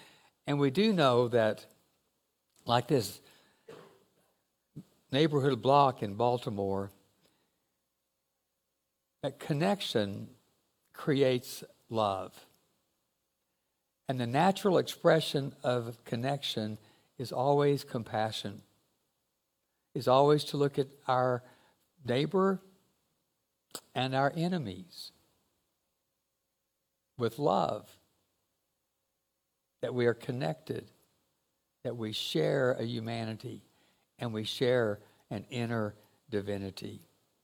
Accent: American